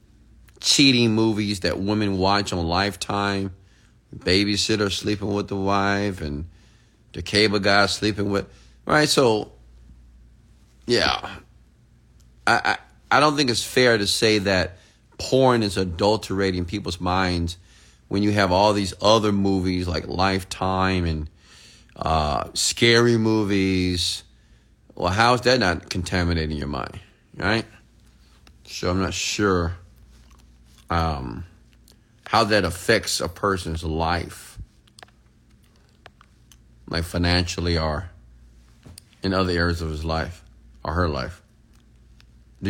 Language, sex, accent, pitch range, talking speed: English, male, American, 85-105 Hz, 115 wpm